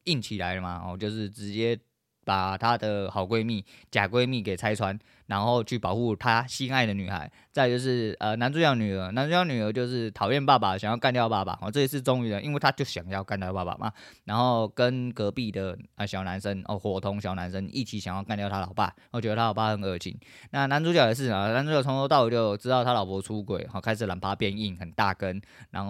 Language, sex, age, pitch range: Chinese, male, 20-39, 100-120 Hz